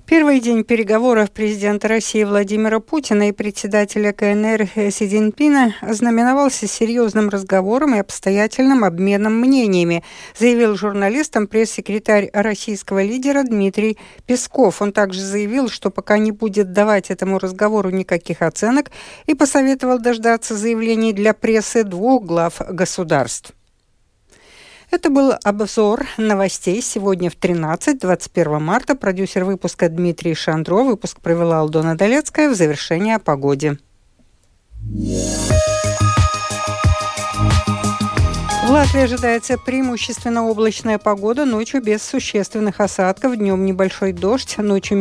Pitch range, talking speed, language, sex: 190-240 Hz, 110 wpm, Russian, female